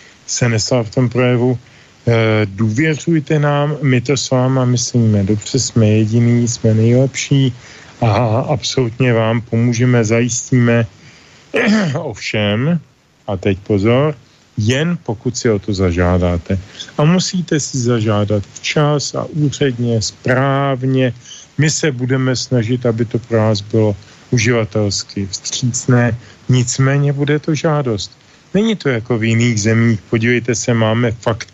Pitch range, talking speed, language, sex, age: 110-130 Hz, 125 wpm, Slovak, male, 40-59